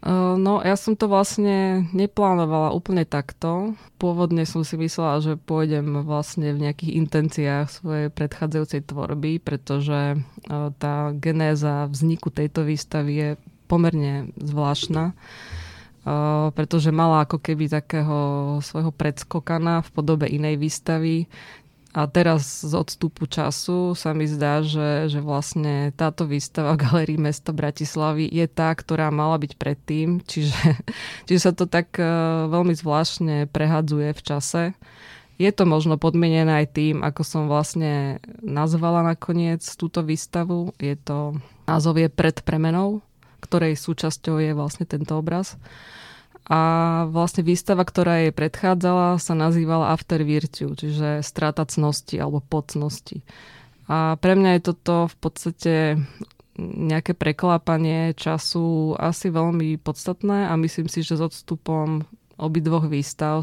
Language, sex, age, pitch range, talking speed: Slovak, female, 20-39, 150-170 Hz, 125 wpm